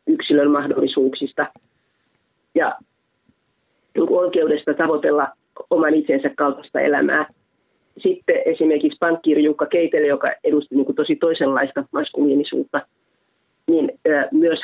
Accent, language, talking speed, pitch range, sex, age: native, Finnish, 85 wpm, 145-170 Hz, female, 30-49